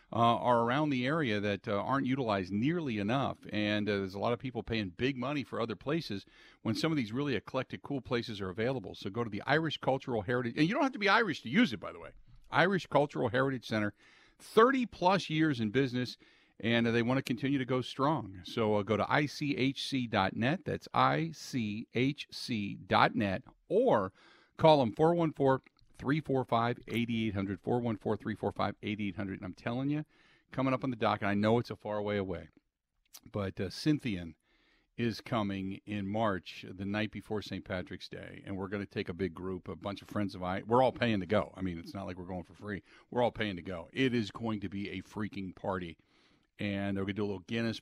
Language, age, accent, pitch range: English, 50-69, American, 100-130 Hz